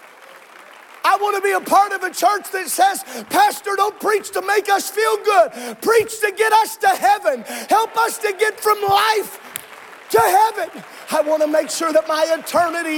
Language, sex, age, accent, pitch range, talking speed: English, male, 40-59, American, 310-400 Hz, 180 wpm